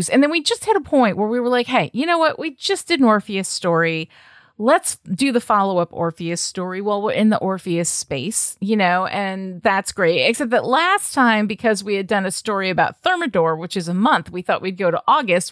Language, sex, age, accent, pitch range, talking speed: English, female, 30-49, American, 190-255 Hz, 230 wpm